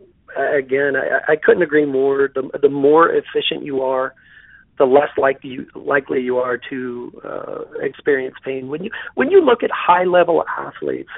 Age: 40-59